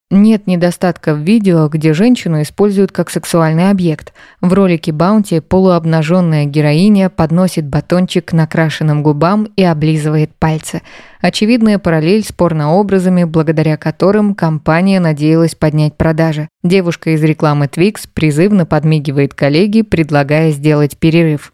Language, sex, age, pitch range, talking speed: Russian, female, 20-39, 155-185 Hz, 115 wpm